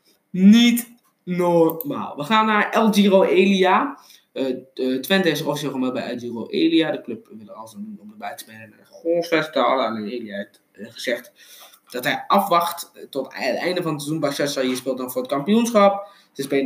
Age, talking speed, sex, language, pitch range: 20-39, 185 wpm, male, Dutch, 130-190 Hz